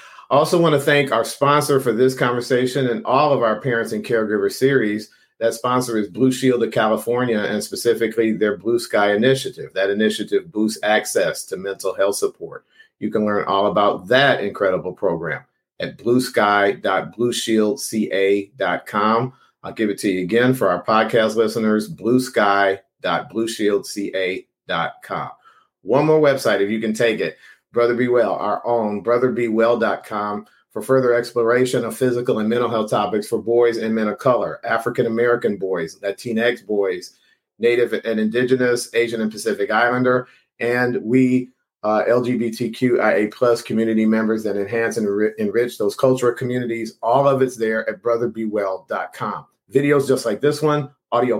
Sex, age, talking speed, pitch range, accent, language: male, 50-69, 145 wpm, 110-130 Hz, American, English